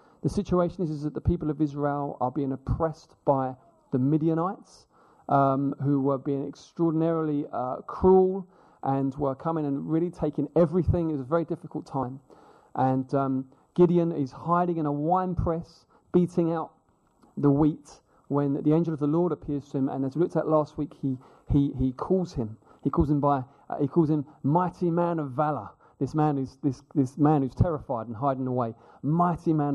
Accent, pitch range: British, 140-175 Hz